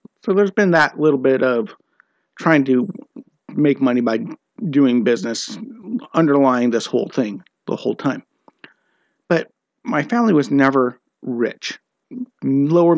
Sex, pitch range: male, 130-170 Hz